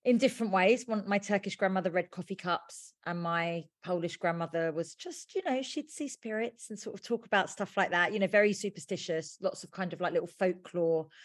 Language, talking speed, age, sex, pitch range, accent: English, 210 wpm, 30-49, female, 180-230 Hz, British